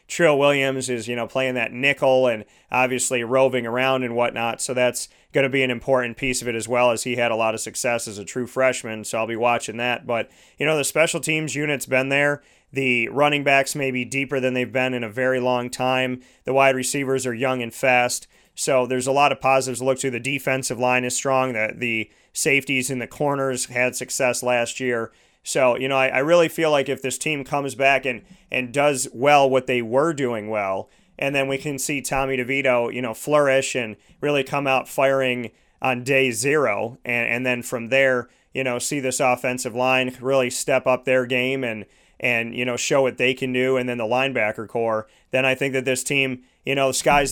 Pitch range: 125-135 Hz